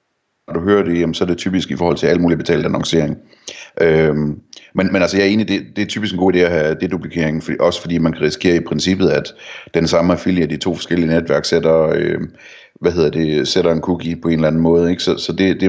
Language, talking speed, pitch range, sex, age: Danish, 270 wpm, 85-95 Hz, male, 30-49